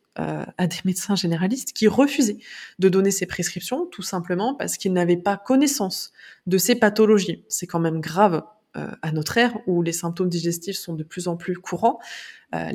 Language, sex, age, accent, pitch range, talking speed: French, female, 20-39, French, 175-215 Hz, 190 wpm